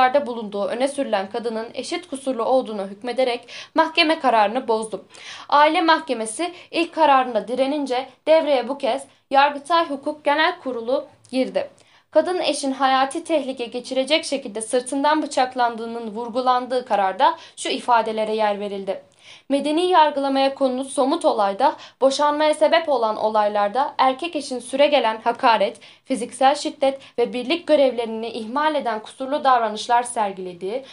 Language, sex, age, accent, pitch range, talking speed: Turkish, female, 10-29, native, 235-300 Hz, 120 wpm